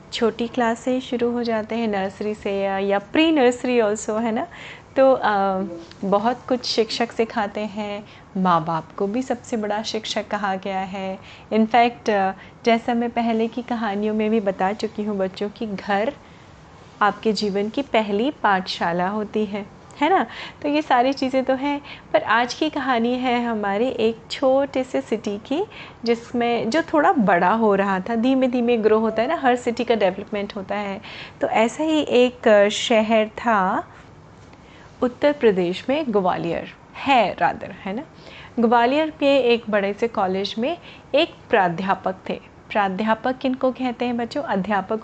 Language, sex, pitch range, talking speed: Hindi, female, 205-260 Hz, 165 wpm